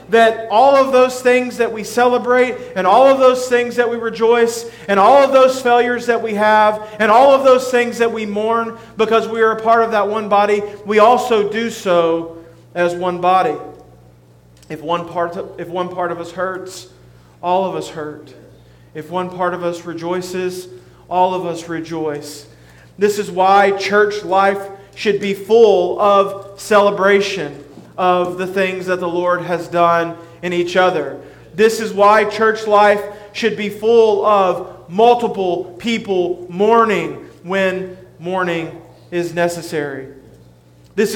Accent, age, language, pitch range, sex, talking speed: American, 40-59, English, 170-215 Hz, male, 160 wpm